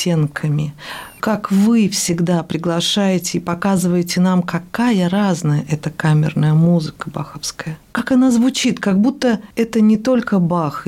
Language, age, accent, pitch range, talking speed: Russian, 50-69, native, 170-225 Hz, 120 wpm